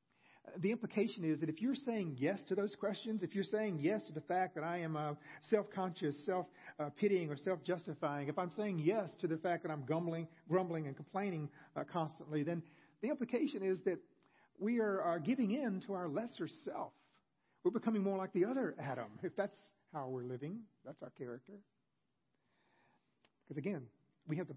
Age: 40-59